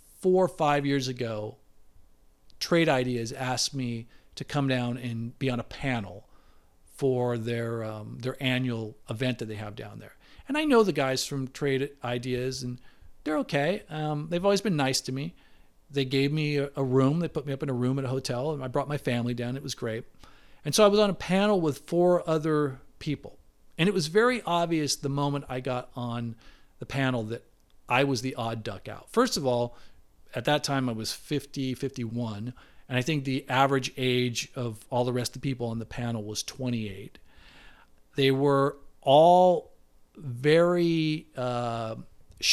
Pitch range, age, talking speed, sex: 120-150 Hz, 40-59, 190 wpm, male